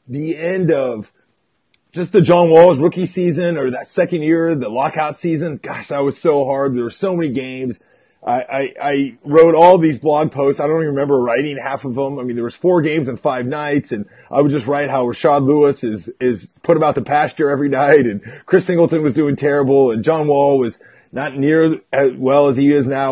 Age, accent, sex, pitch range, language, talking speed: 30-49, American, male, 135-170 Hz, English, 220 wpm